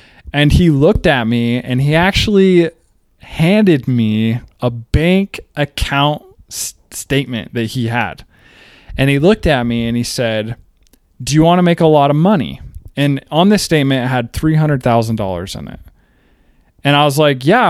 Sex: male